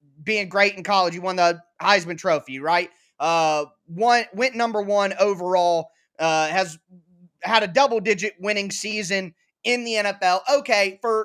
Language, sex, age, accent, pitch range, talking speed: English, male, 20-39, American, 190-245 Hz, 155 wpm